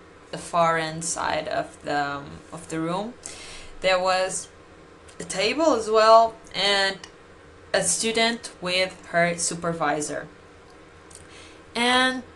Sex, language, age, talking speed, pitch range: female, English, 20-39, 110 wpm, 165-210 Hz